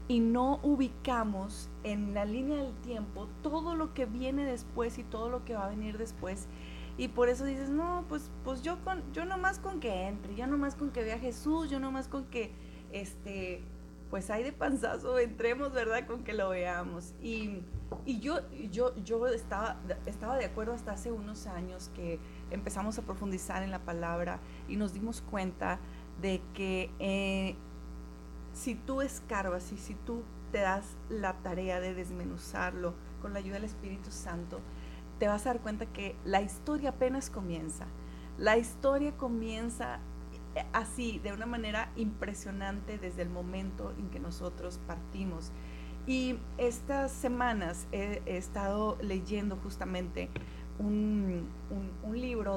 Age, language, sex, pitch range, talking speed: 30-49, Spanish, female, 180-240 Hz, 160 wpm